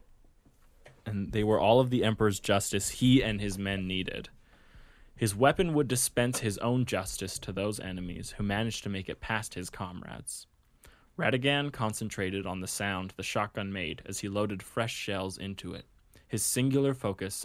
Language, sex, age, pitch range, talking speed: English, male, 20-39, 95-120 Hz, 170 wpm